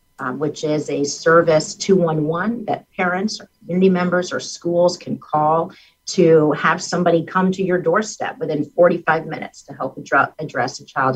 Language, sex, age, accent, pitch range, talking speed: English, female, 50-69, American, 150-195 Hz, 160 wpm